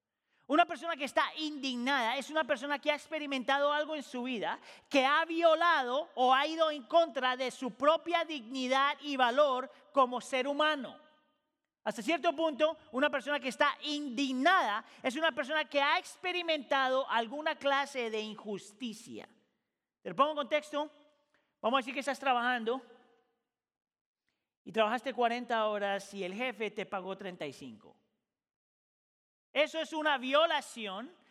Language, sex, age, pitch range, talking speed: Spanish, male, 40-59, 245-305 Hz, 140 wpm